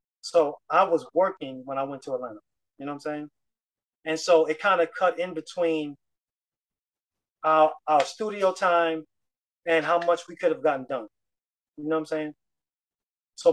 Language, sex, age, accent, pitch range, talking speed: English, male, 30-49, American, 150-205 Hz, 175 wpm